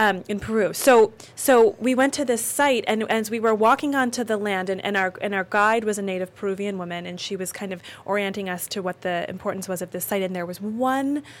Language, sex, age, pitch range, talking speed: English, female, 20-39, 185-225 Hz, 260 wpm